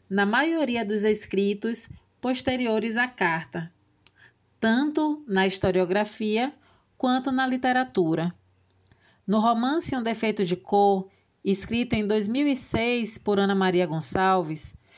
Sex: female